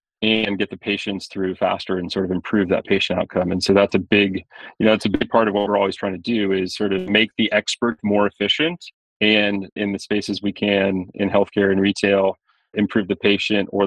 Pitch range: 100-110 Hz